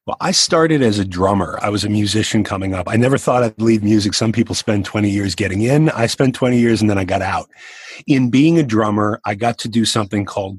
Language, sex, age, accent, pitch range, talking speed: English, male, 30-49, American, 115-155 Hz, 250 wpm